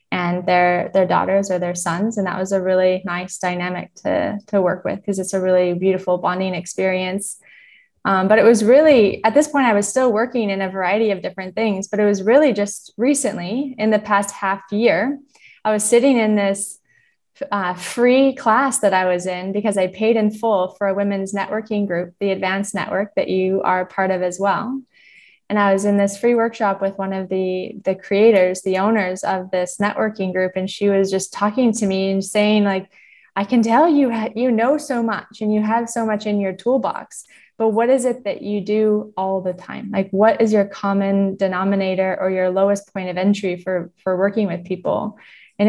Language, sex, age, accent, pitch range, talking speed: English, female, 20-39, American, 185-220 Hz, 210 wpm